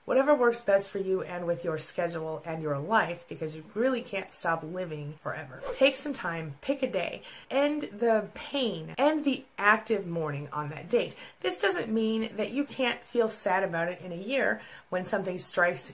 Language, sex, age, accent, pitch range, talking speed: English, female, 30-49, American, 165-235 Hz, 190 wpm